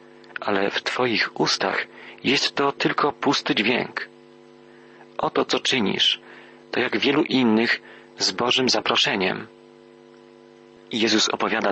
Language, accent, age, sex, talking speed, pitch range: Polish, native, 40-59, male, 110 wpm, 90-120 Hz